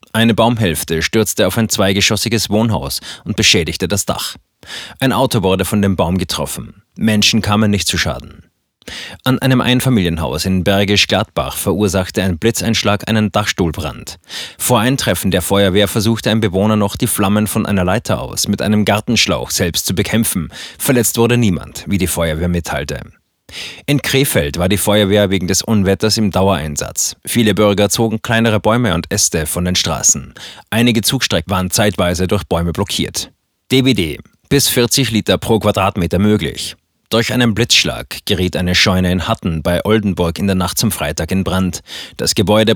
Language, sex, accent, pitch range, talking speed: German, male, German, 95-110 Hz, 160 wpm